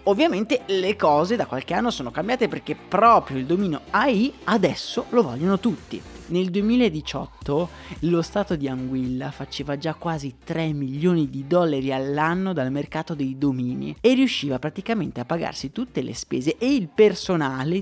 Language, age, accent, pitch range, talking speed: Italian, 20-39, native, 140-190 Hz, 155 wpm